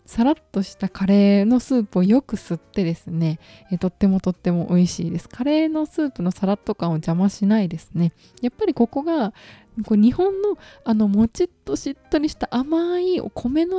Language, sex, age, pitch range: Japanese, female, 20-39, 185-270 Hz